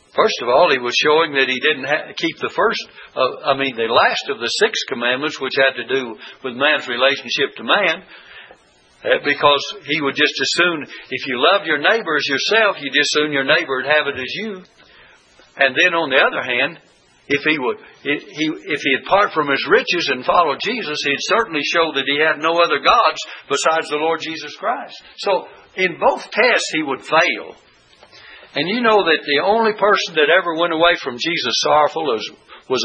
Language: English